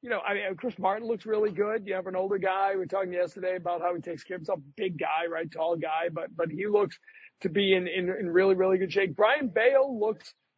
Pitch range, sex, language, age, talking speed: 180-210 Hz, male, English, 40-59, 260 wpm